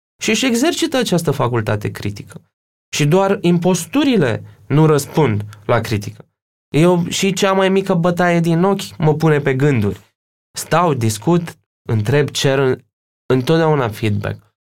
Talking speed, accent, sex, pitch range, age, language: 125 wpm, native, male, 105-150 Hz, 20-39, Romanian